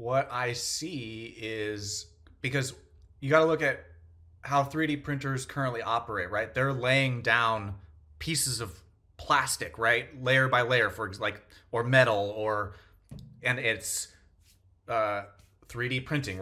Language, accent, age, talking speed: English, American, 30-49, 130 wpm